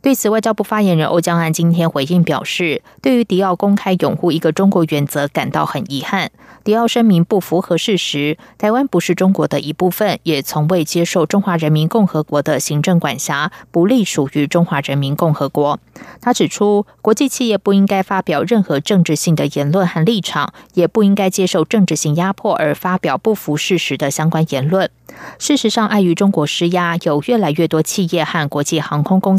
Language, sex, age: German, female, 20-39